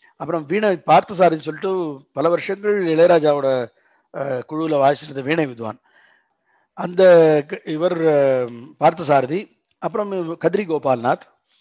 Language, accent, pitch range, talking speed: Tamil, native, 145-195 Hz, 90 wpm